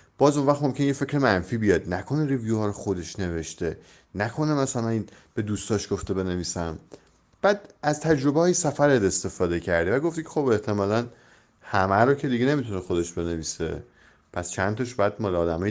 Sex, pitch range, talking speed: male, 90-120 Hz, 170 wpm